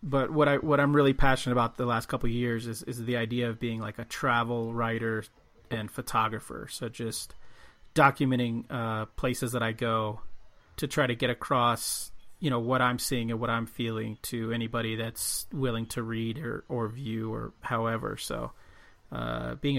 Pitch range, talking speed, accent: 115-130 Hz, 185 wpm, American